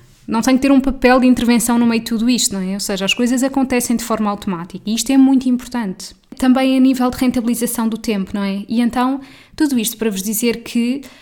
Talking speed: 240 wpm